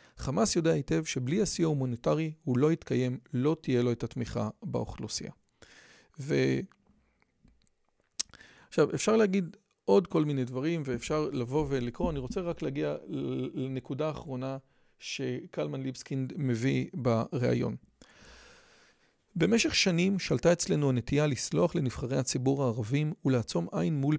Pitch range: 125-160 Hz